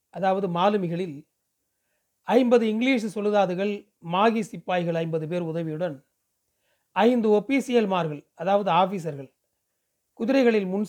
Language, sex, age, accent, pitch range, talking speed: Tamil, male, 40-59, native, 165-210 Hz, 90 wpm